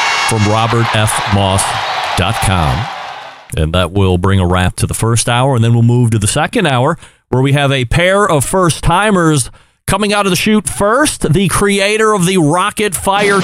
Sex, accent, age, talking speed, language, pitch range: male, American, 40-59, 180 wpm, English, 125-180 Hz